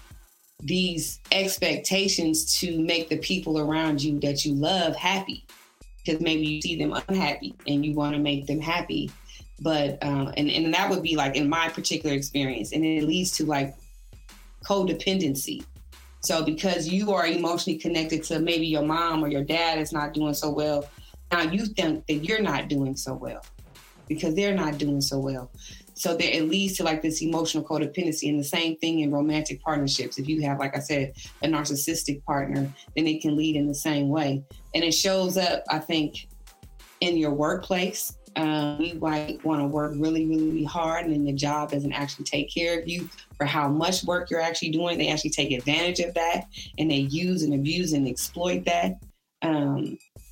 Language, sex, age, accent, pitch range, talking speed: English, female, 20-39, American, 145-165 Hz, 190 wpm